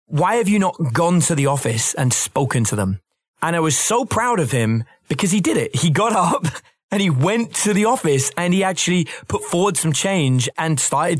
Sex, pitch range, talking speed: male, 120-175 Hz, 220 wpm